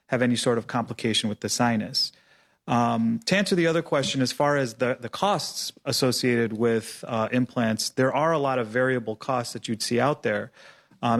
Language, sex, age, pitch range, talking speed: English, male, 30-49, 120-140 Hz, 200 wpm